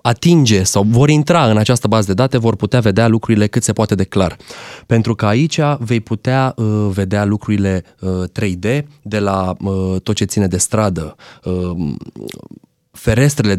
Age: 20-39